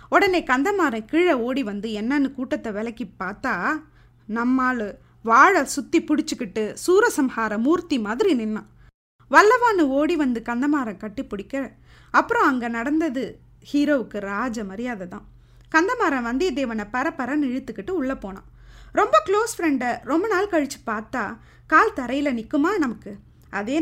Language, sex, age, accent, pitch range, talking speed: Tamil, female, 20-39, native, 225-325 Hz, 115 wpm